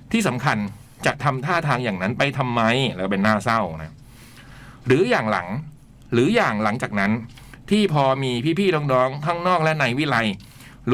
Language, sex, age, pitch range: Thai, male, 60-79, 120-160 Hz